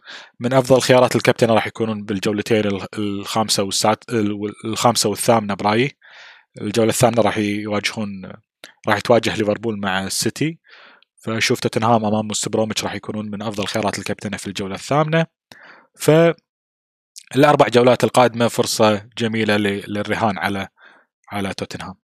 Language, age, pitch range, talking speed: Arabic, 20-39, 105-130 Hz, 120 wpm